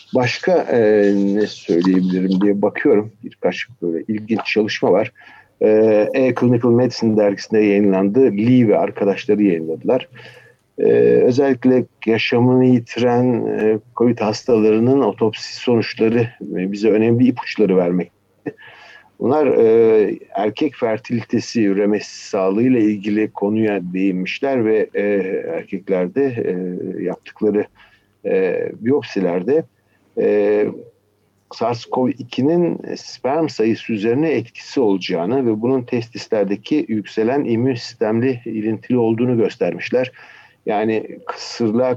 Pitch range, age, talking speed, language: 100-125 Hz, 50-69, 100 wpm, Turkish